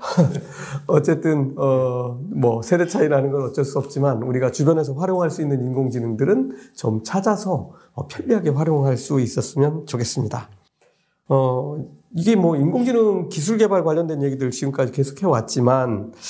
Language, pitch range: Korean, 130-185 Hz